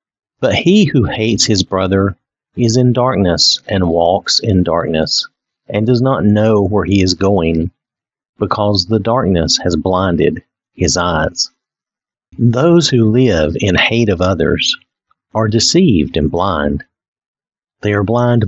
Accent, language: American, English